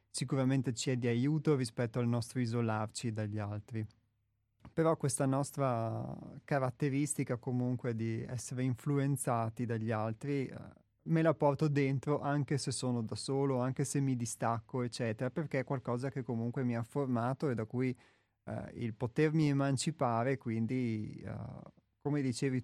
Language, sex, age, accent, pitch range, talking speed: Italian, male, 30-49, native, 115-140 Hz, 145 wpm